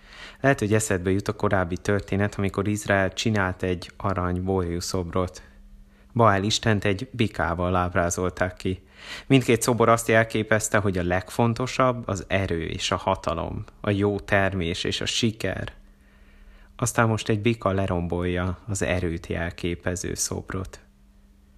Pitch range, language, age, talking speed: 90-110 Hz, Hungarian, 30-49, 130 wpm